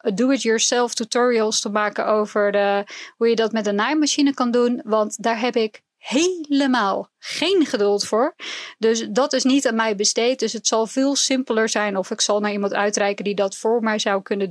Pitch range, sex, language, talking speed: 215-260 Hz, female, Dutch, 190 wpm